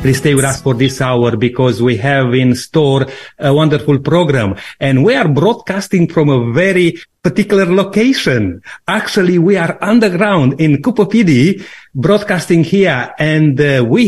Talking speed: 150 wpm